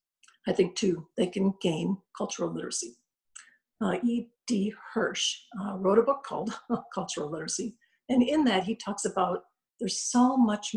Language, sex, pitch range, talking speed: English, female, 190-245 Hz, 150 wpm